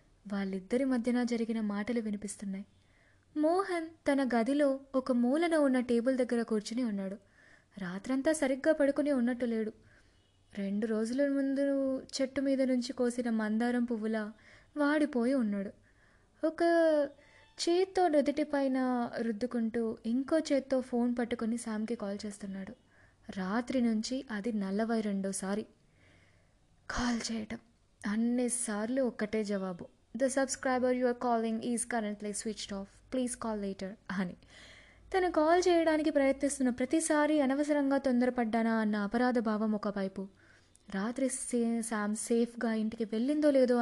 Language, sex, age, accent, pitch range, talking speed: Telugu, female, 20-39, native, 215-275 Hz, 115 wpm